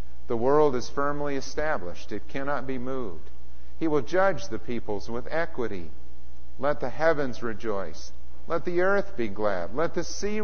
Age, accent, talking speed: 50-69, American, 160 wpm